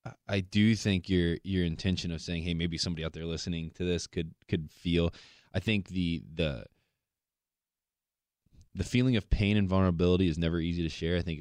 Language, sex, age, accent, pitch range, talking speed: English, male, 20-39, American, 80-100 Hz, 190 wpm